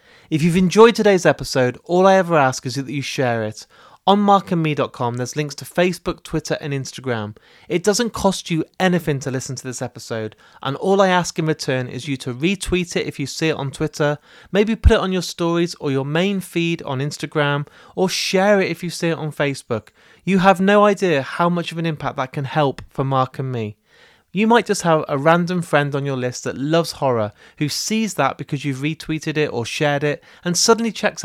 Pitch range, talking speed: 140-175 Hz, 215 wpm